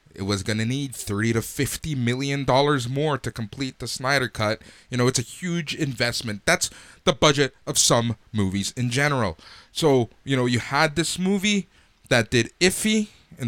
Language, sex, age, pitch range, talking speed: English, male, 20-39, 110-165 Hz, 180 wpm